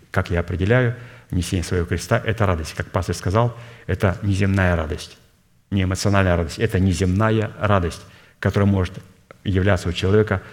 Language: Russian